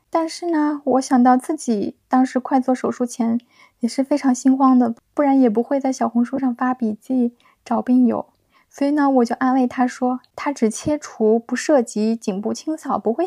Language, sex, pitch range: Chinese, female, 240-295 Hz